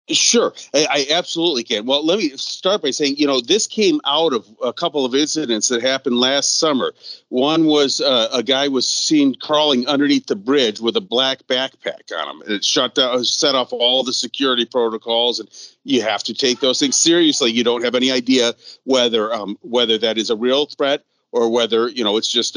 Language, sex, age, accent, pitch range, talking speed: English, male, 40-59, American, 120-165 Hz, 210 wpm